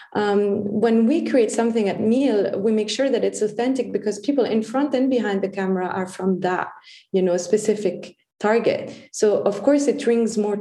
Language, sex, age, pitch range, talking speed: English, female, 20-39, 200-240 Hz, 190 wpm